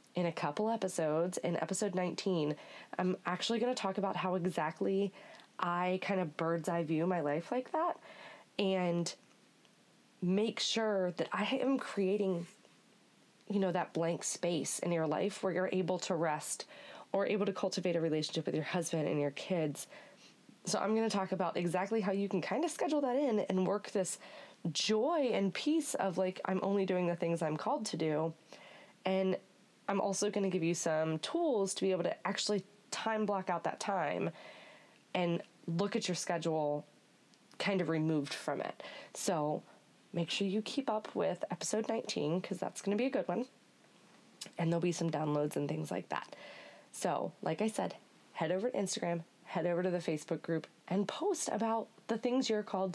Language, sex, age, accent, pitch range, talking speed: English, female, 20-39, American, 170-210 Hz, 185 wpm